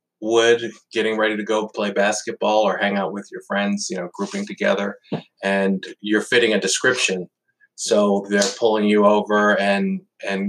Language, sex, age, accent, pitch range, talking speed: English, male, 20-39, American, 100-115 Hz, 165 wpm